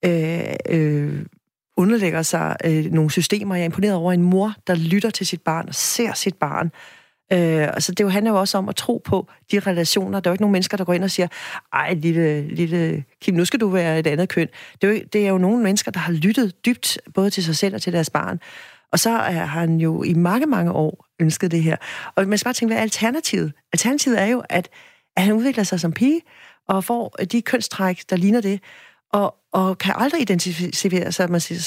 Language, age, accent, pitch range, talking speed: Danish, 40-59, native, 170-205 Hz, 225 wpm